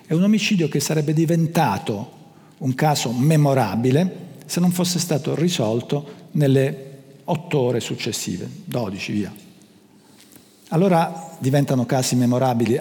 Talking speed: 110 wpm